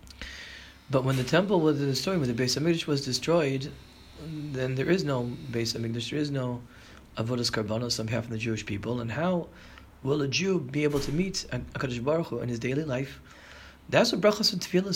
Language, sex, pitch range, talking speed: English, male, 120-165 Hz, 195 wpm